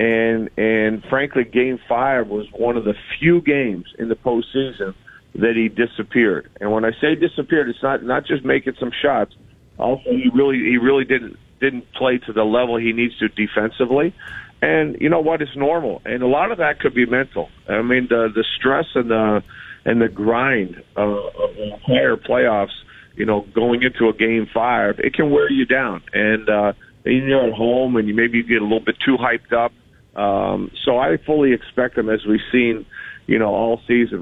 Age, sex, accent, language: 50-69, male, American, English